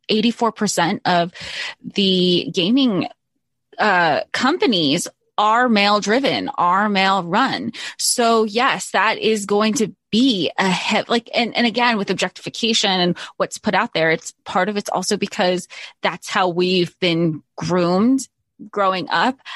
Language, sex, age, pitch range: English, female, 20-39, 185-230 Hz